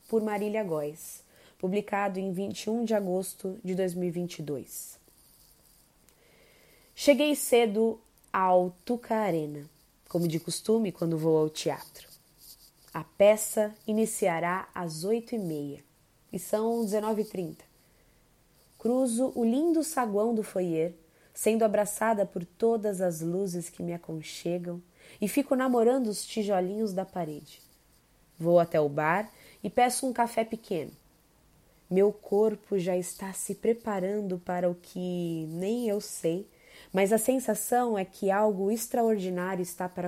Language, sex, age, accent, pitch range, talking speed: Portuguese, female, 20-39, Brazilian, 170-215 Hz, 125 wpm